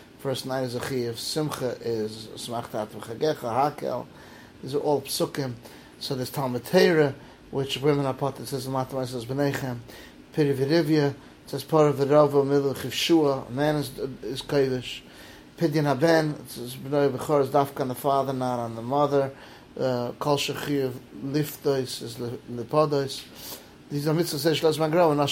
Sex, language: male, English